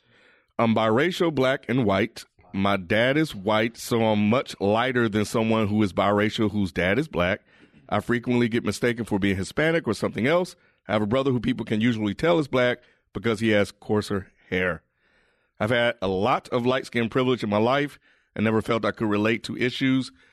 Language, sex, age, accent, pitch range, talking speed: English, male, 30-49, American, 100-130 Hz, 200 wpm